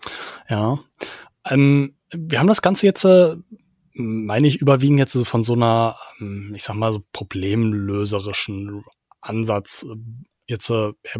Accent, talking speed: German, 115 wpm